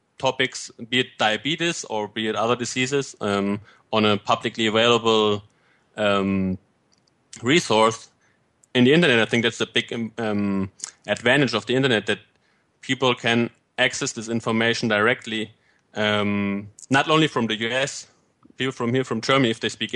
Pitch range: 105-130 Hz